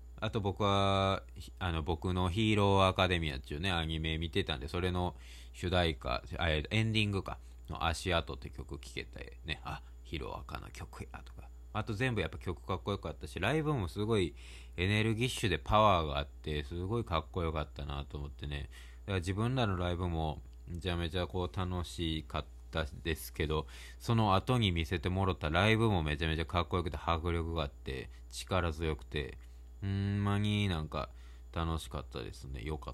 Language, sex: Japanese, male